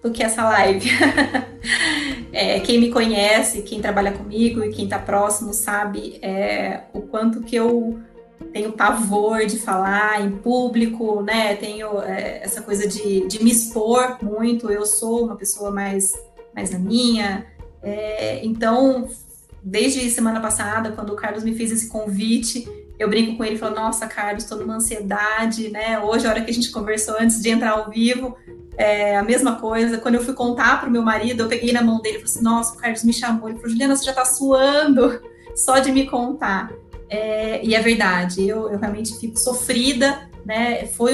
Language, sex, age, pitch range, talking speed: Portuguese, female, 20-39, 210-235 Hz, 185 wpm